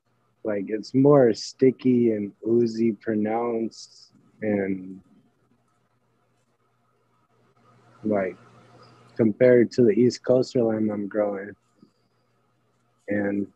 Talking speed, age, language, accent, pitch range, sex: 80 wpm, 20-39, English, American, 105-120 Hz, male